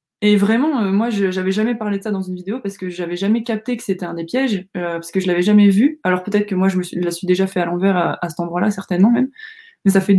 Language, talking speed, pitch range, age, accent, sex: French, 310 wpm, 185-225 Hz, 20-39, French, female